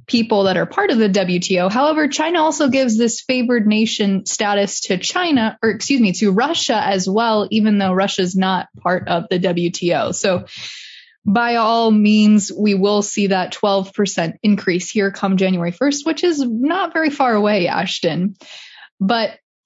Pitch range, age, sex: 195-250 Hz, 20-39, female